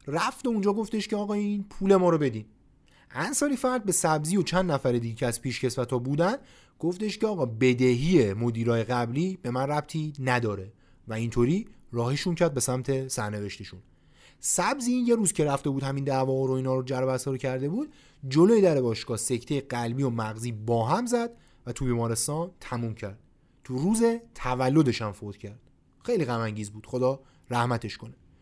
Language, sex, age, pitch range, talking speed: Persian, male, 30-49, 120-190 Hz, 180 wpm